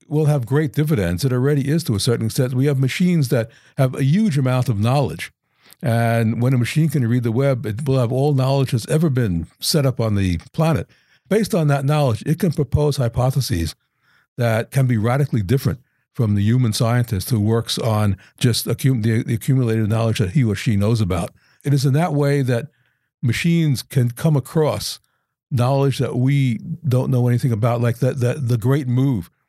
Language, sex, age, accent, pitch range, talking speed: English, male, 60-79, American, 110-135 Hz, 190 wpm